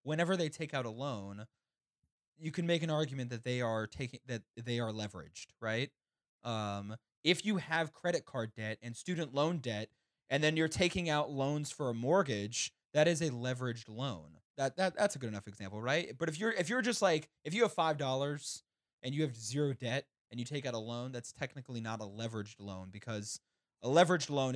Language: English